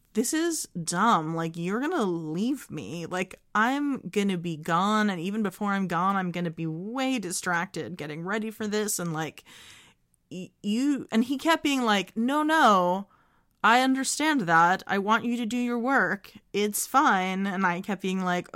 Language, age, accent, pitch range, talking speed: English, 30-49, American, 170-225 Hz, 185 wpm